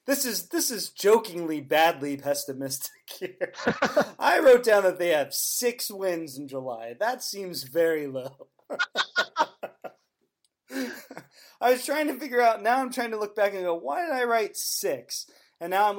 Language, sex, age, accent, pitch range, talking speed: English, male, 30-49, American, 135-195 Hz, 165 wpm